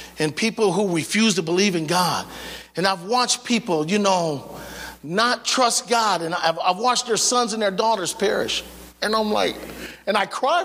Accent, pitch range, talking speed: American, 170-230 Hz, 185 wpm